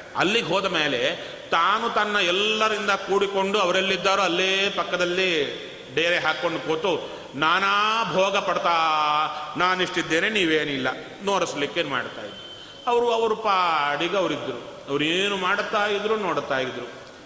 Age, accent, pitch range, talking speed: 30-49, native, 150-235 Hz, 105 wpm